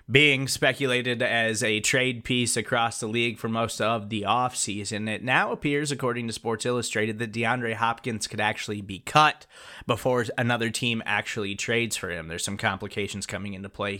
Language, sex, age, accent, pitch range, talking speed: English, male, 20-39, American, 110-135 Hz, 175 wpm